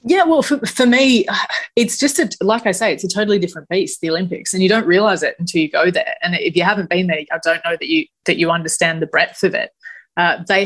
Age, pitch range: 30-49, 170-195 Hz